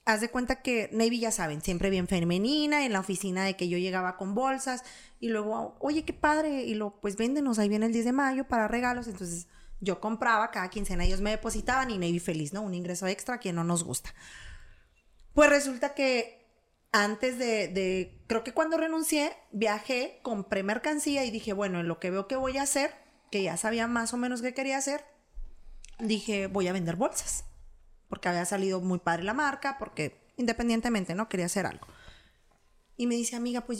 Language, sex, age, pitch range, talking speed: Spanish, female, 30-49, 195-260 Hz, 200 wpm